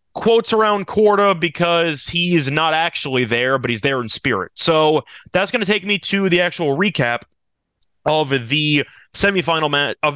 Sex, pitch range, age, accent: male, 135-180 Hz, 30-49, American